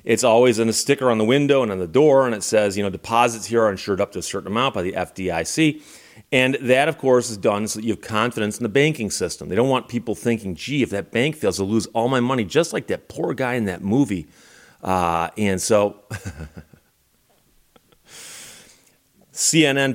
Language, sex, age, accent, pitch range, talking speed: English, male, 30-49, American, 105-130 Hz, 215 wpm